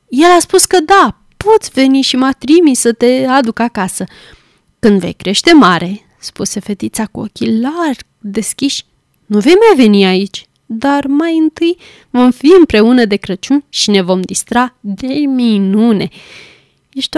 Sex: female